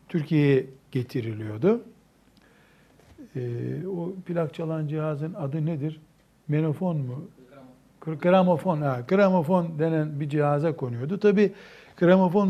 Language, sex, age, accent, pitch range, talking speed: Turkish, male, 60-79, native, 130-185 Hz, 90 wpm